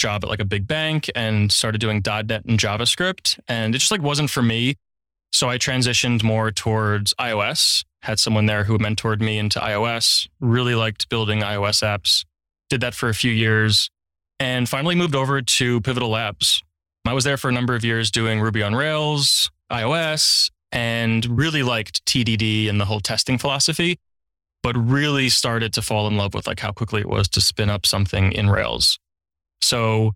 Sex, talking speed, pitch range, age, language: male, 185 wpm, 105-125 Hz, 20-39, English